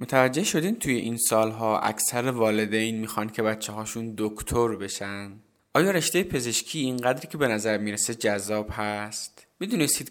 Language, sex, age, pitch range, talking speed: Persian, male, 20-39, 105-120 Hz, 135 wpm